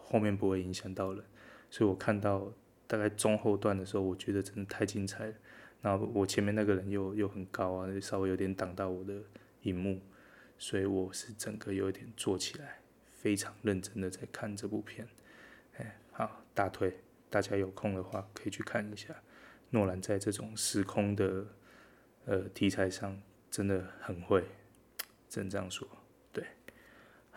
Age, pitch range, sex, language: 20-39, 95-110 Hz, male, Chinese